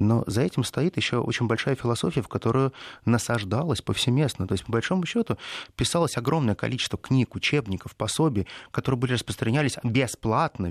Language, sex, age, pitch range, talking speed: Russian, male, 20-39, 105-135 Hz, 150 wpm